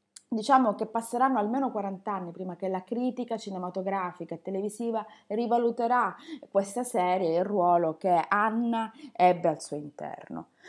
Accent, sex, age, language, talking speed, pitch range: native, female, 20-39, Italian, 140 wpm, 180-240 Hz